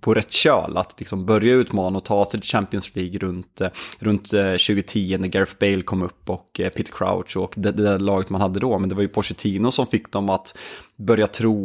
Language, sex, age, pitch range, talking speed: Swedish, male, 20-39, 95-115 Hz, 215 wpm